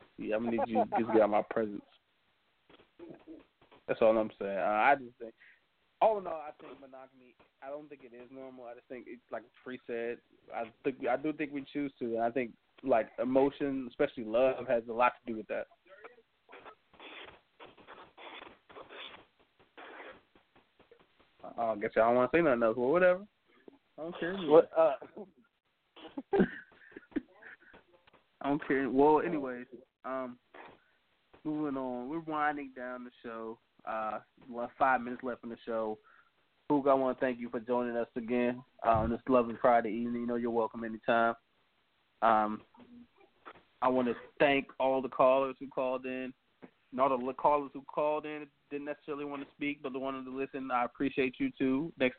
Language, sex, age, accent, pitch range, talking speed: English, male, 20-39, American, 120-145 Hz, 170 wpm